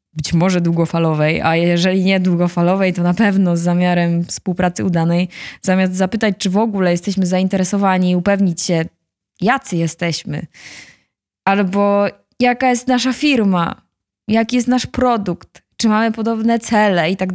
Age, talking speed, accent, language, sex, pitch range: 20-39, 140 wpm, native, Polish, female, 175-220 Hz